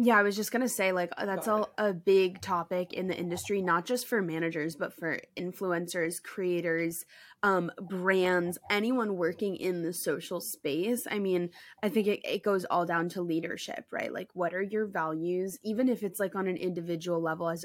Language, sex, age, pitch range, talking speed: English, female, 20-39, 175-205 Hz, 195 wpm